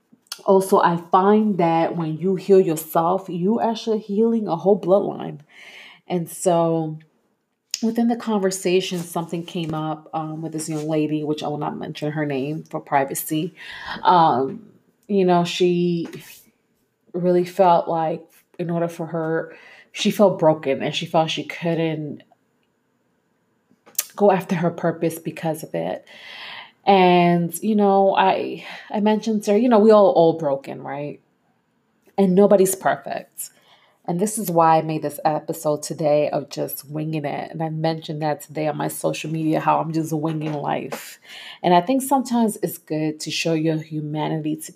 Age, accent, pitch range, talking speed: 30-49, American, 155-200 Hz, 155 wpm